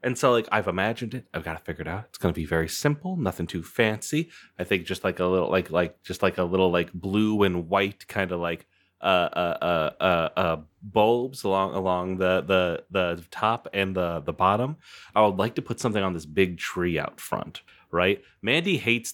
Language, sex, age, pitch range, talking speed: English, male, 30-49, 90-130 Hz, 225 wpm